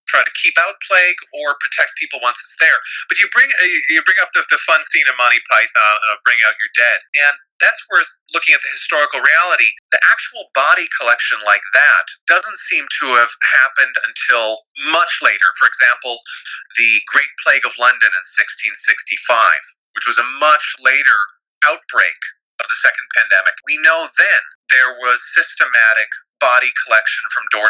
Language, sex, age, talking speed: English, male, 40-59, 175 wpm